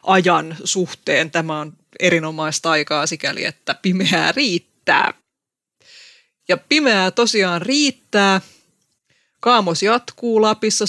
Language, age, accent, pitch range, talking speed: Finnish, 20-39, native, 165-205 Hz, 95 wpm